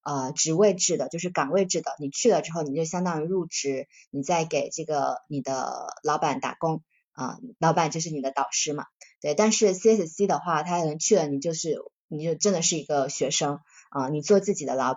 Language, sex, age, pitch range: Chinese, female, 20-39, 145-185 Hz